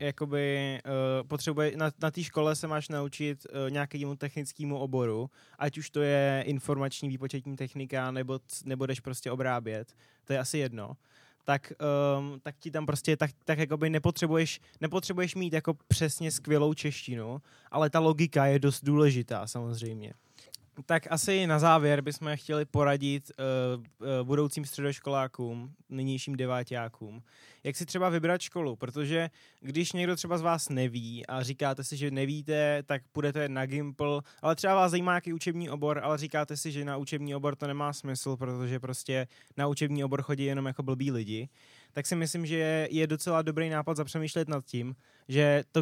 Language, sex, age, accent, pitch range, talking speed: Czech, male, 20-39, native, 135-155 Hz, 160 wpm